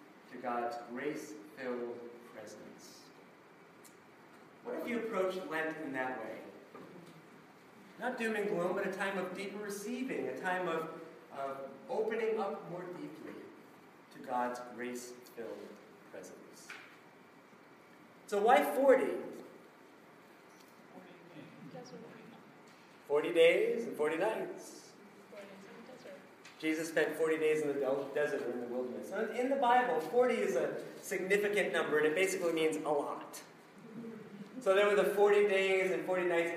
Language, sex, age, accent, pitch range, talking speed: English, male, 40-59, American, 145-205 Hz, 125 wpm